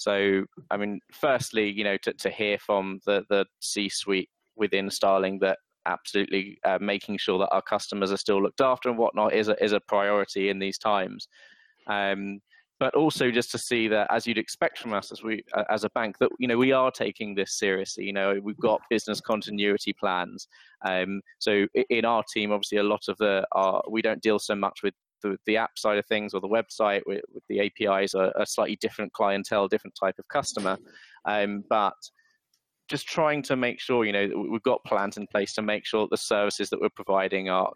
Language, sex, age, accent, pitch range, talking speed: English, male, 20-39, British, 100-110 Hz, 205 wpm